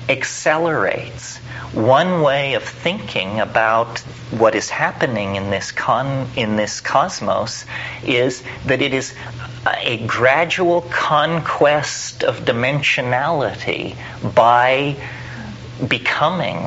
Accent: American